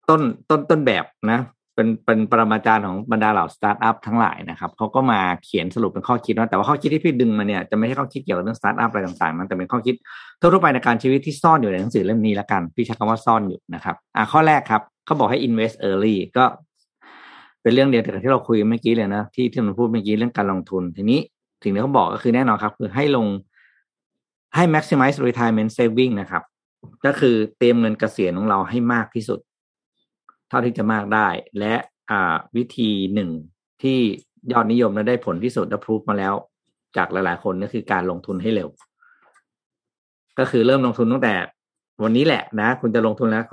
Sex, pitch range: male, 105-125 Hz